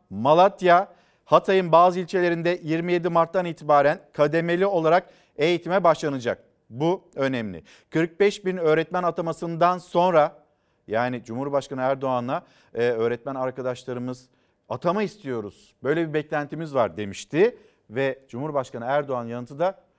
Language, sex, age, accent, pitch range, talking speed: Turkish, male, 50-69, native, 135-175 Hz, 110 wpm